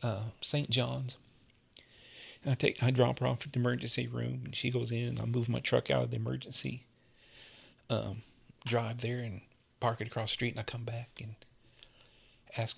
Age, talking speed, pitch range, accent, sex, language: 40-59, 195 wpm, 120-140 Hz, American, male, English